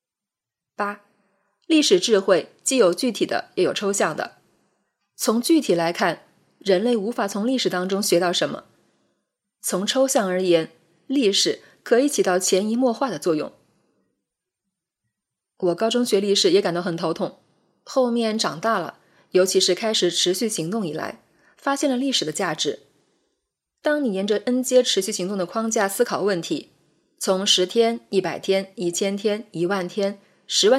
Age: 20-39